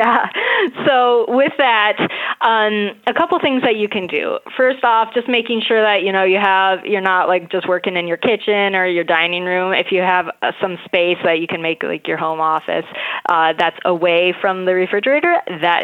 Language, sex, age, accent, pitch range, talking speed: English, female, 20-39, American, 180-225 Hz, 210 wpm